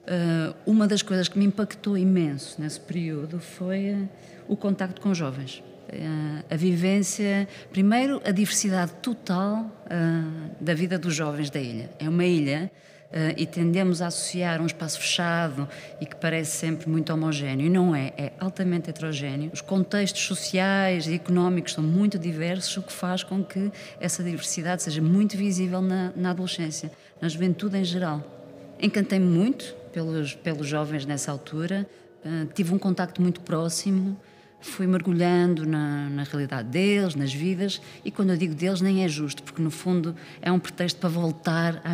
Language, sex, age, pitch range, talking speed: Portuguese, female, 20-39, 155-190 Hz, 160 wpm